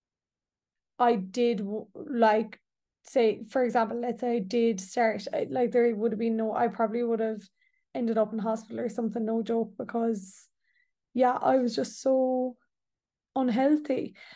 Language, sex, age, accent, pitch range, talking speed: English, female, 20-39, Irish, 235-270 Hz, 150 wpm